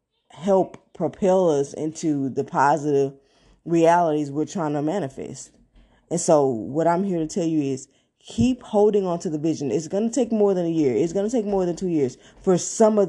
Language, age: English, 20-39